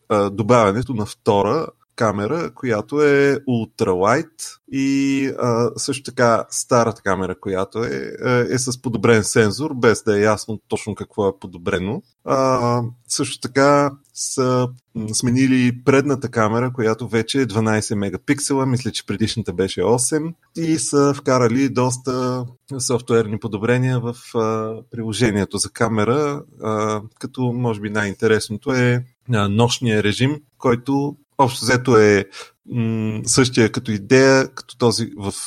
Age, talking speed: 30-49, 125 wpm